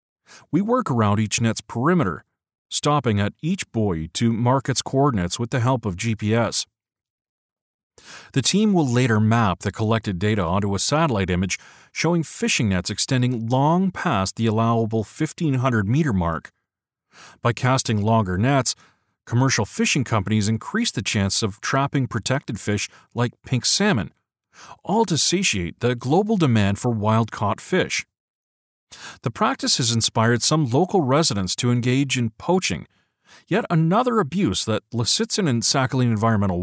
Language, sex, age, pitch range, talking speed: English, male, 40-59, 105-140 Hz, 140 wpm